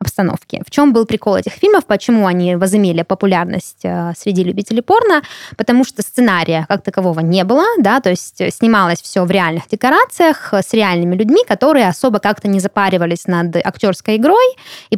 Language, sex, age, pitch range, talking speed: Russian, female, 20-39, 185-240 Hz, 165 wpm